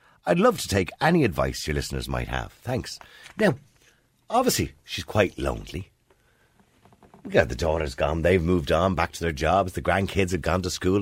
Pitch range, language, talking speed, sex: 90-145 Hz, English, 180 wpm, male